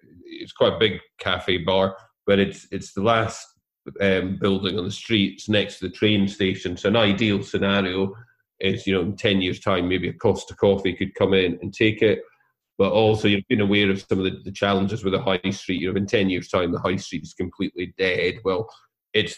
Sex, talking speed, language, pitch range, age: male, 220 wpm, English, 95-100 Hz, 30-49